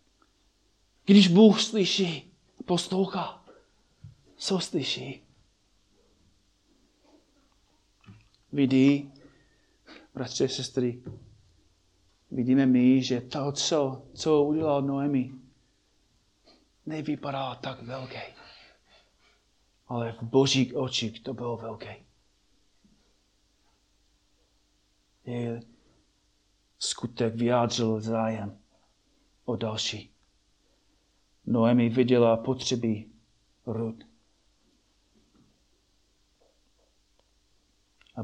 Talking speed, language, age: 60 wpm, Czech, 30-49